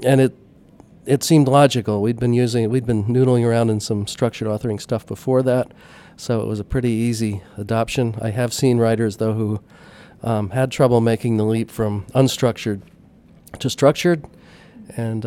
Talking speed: 170 wpm